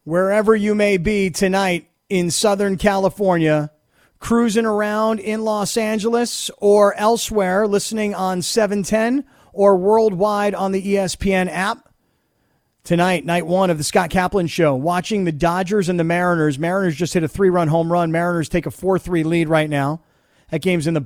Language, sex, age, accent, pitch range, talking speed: English, male, 40-59, American, 165-200 Hz, 160 wpm